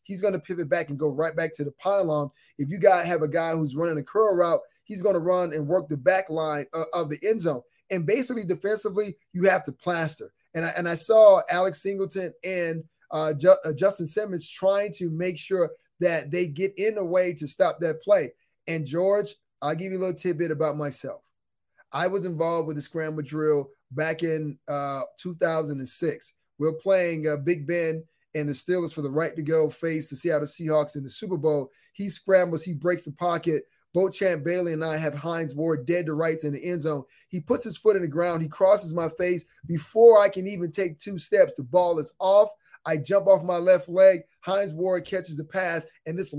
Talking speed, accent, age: 220 wpm, American, 20-39